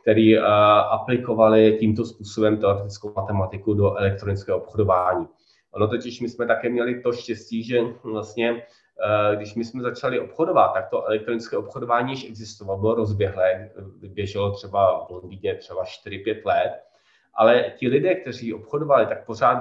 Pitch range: 105-120 Hz